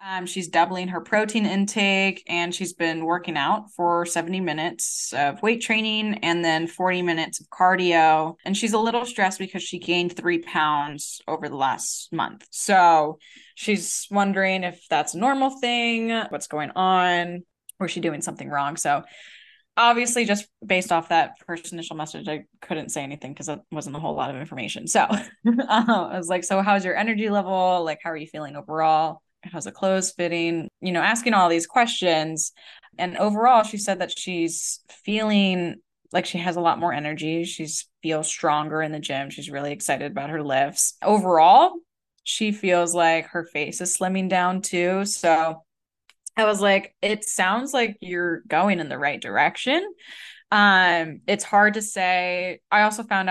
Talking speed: 175 wpm